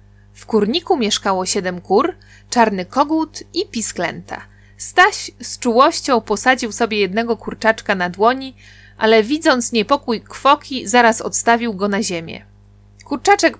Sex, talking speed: female, 125 wpm